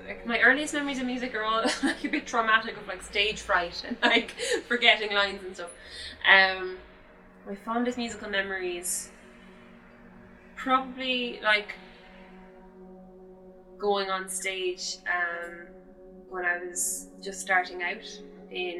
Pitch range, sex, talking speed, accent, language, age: 175-200 Hz, female, 130 wpm, Irish, English, 10-29